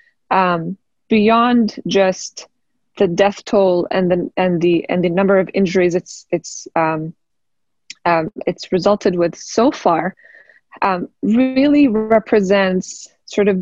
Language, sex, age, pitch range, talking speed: English, female, 20-39, 180-225 Hz, 130 wpm